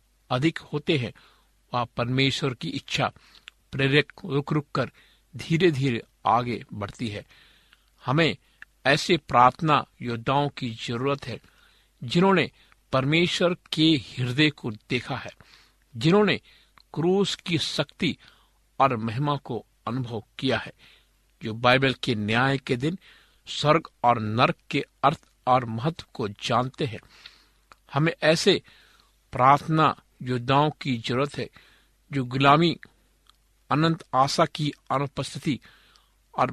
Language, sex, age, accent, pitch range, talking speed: Hindi, male, 50-69, native, 125-155 Hz, 115 wpm